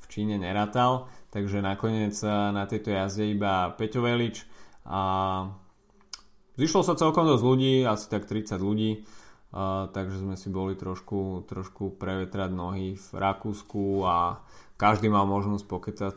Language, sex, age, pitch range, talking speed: Slovak, male, 20-39, 95-110 Hz, 135 wpm